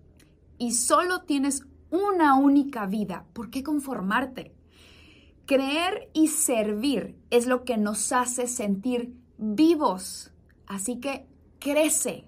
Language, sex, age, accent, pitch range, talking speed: Spanish, female, 20-39, Mexican, 185-265 Hz, 110 wpm